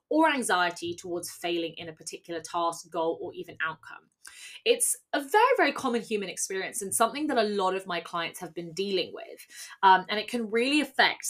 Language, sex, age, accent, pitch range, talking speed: English, female, 20-39, British, 180-235 Hz, 195 wpm